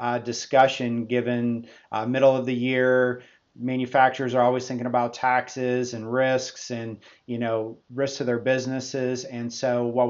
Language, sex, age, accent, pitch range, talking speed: English, male, 30-49, American, 120-130 Hz, 155 wpm